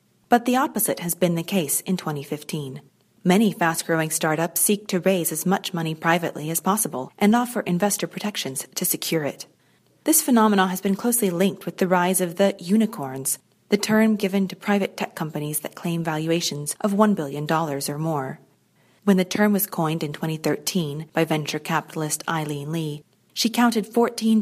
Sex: female